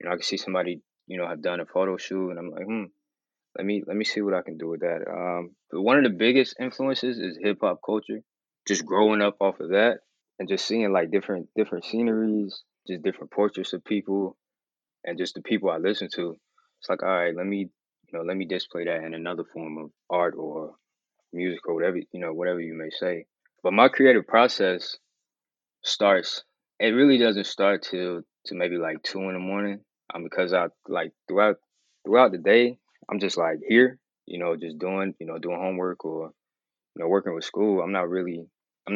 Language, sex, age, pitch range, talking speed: English, male, 20-39, 85-105 Hz, 215 wpm